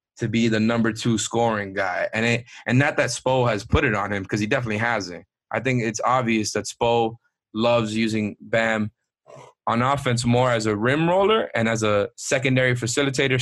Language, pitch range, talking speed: English, 110-125 Hz, 190 wpm